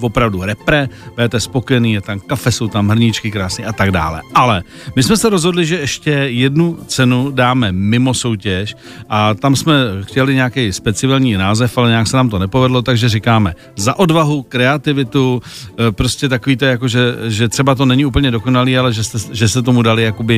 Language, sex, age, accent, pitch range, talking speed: Czech, male, 50-69, native, 115-145 Hz, 180 wpm